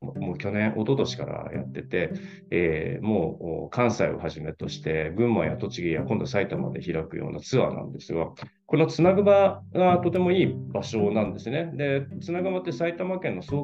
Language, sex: Japanese, male